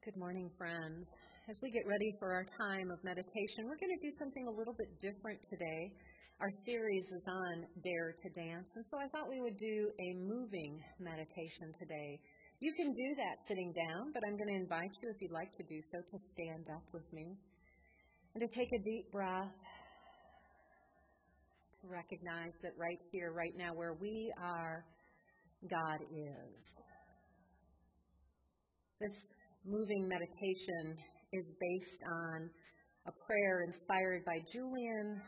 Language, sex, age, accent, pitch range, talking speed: English, female, 40-59, American, 165-205 Hz, 155 wpm